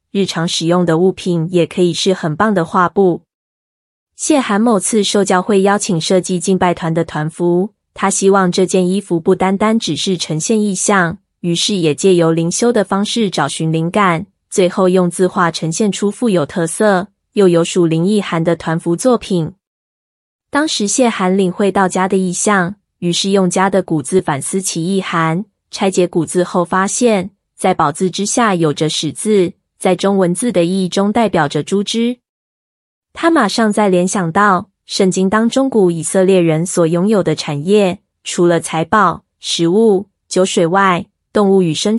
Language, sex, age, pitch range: Chinese, female, 20-39, 170-205 Hz